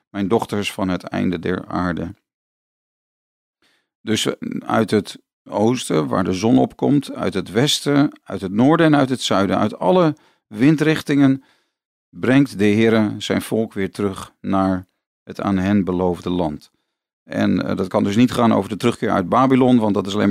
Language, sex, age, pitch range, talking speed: Dutch, male, 40-59, 95-120 Hz, 165 wpm